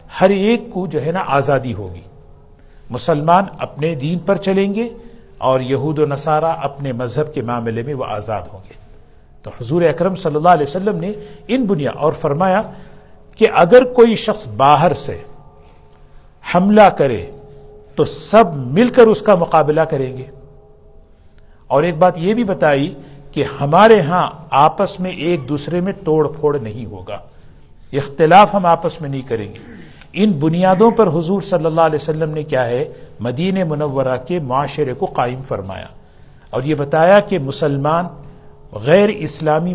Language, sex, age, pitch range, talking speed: Urdu, male, 50-69, 130-180 Hz, 160 wpm